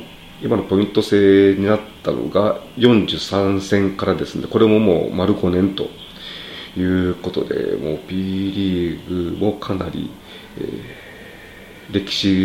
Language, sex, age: Japanese, male, 40-59